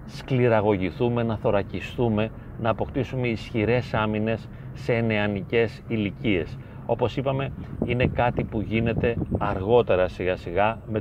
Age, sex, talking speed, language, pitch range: 40-59, male, 110 wpm, Greek, 105-125 Hz